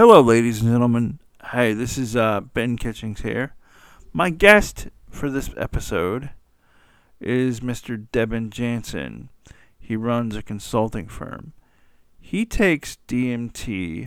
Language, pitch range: English, 105-135 Hz